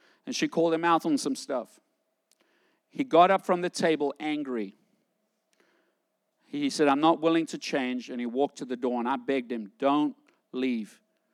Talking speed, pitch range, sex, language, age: 180 wpm, 150-220 Hz, male, English, 50-69